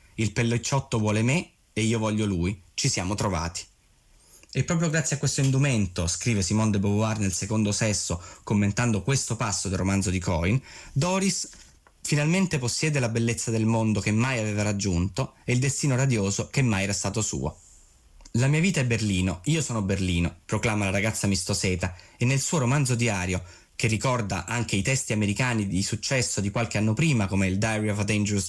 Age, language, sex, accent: 20-39, Italian, male, native